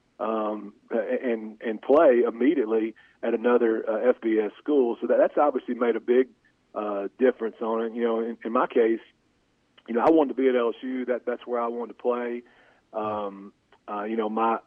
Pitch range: 110-125 Hz